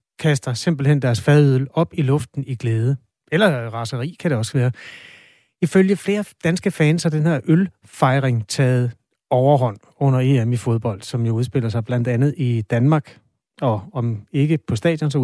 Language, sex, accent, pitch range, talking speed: Danish, male, native, 120-155 Hz, 175 wpm